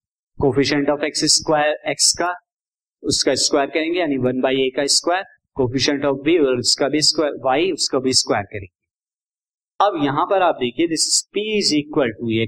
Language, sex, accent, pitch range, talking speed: Hindi, male, native, 135-185 Hz, 145 wpm